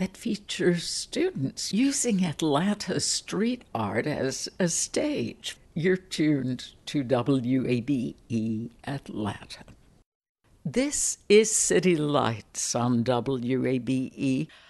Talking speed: 85 wpm